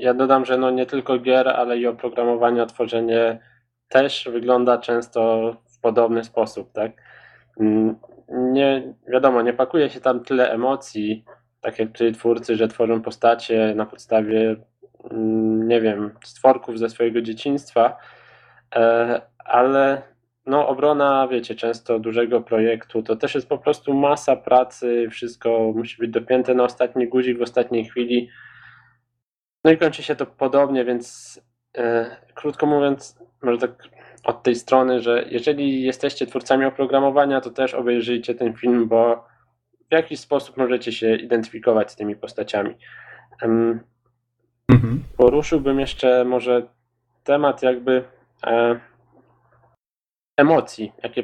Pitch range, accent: 115-130 Hz, native